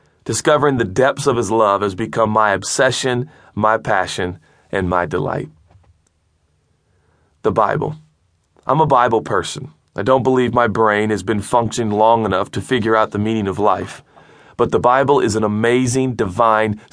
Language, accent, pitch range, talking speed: English, American, 105-130 Hz, 160 wpm